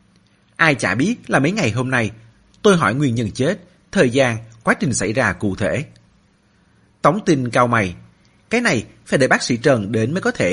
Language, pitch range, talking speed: Vietnamese, 105-155 Hz, 205 wpm